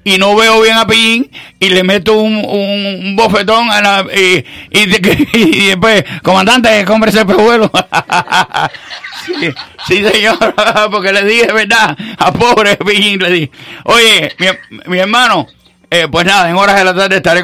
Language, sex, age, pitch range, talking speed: English, male, 60-79, 140-205 Hz, 165 wpm